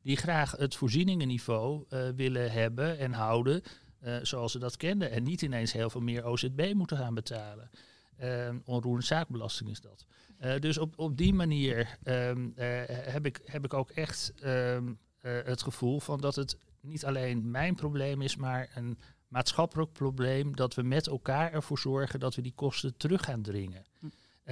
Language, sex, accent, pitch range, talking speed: Dutch, male, Dutch, 120-155 Hz, 175 wpm